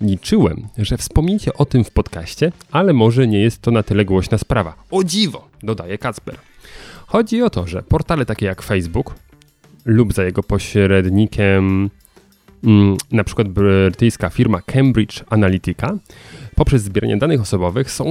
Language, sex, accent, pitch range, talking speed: Polish, male, native, 100-130 Hz, 145 wpm